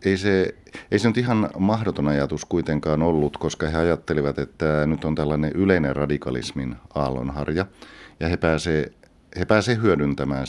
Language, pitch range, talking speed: Finnish, 70-80 Hz, 135 wpm